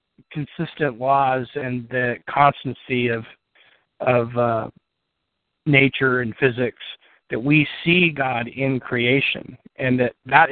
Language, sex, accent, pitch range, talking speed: English, male, American, 120-145 Hz, 115 wpm